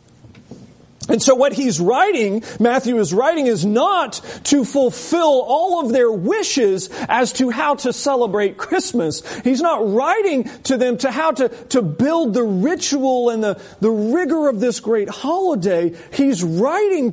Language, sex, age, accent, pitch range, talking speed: English, male, 40-59, American, 155-245 Hz, 155 wpm